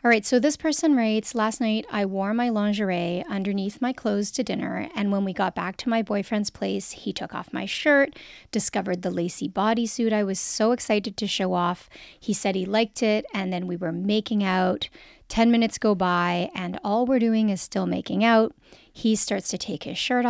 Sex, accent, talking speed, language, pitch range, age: female, American, 205 wpm, English, 195-230 Hz, 40-59